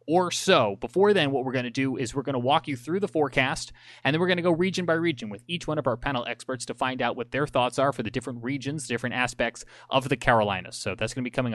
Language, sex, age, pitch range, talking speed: English, male, 30-49, 120-150 Hz, 290 wpm